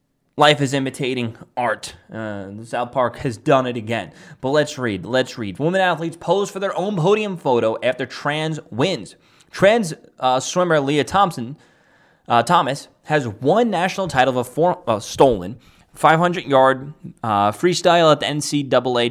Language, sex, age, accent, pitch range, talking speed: English, male, 20-39, American, 125-180 Hz, 150 wpm